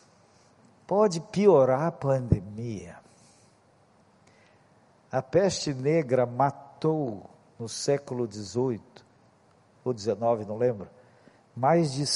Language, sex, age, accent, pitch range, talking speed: Portuguese, male, 50-69, Brazilian, 140-195 Hz, 85 wpm